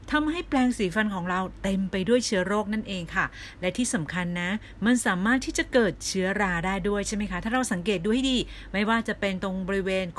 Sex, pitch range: female, 150-210 Hz